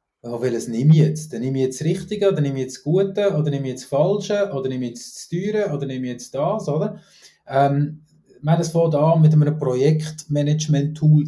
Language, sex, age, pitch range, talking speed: German, male, 30-49, 135-170 Hz, 230 wpm